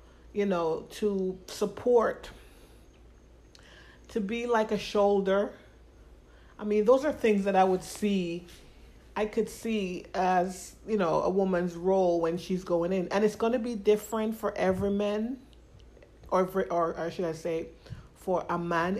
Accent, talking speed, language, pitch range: American, 160 wpm, English, 170-200 Hz